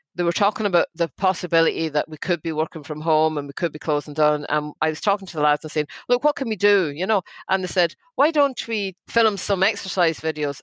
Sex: female